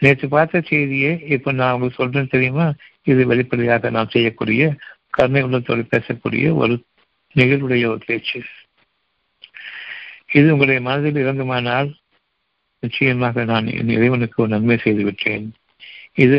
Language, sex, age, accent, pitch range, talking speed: Tamil, male, 60-79, native, 115-140 Hz, 90 wpm